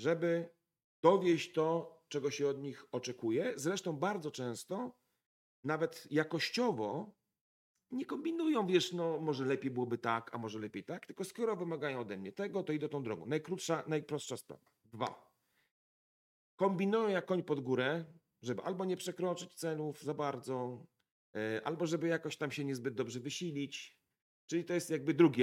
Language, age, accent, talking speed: Polish, 40-59, native, 150 wpm